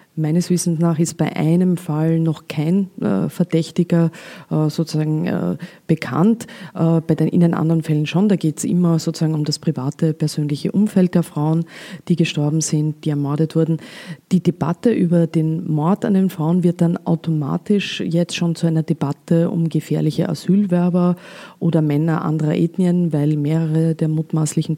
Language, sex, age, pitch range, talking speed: German, female, 30-49, 155-175 Hz, 150 wpm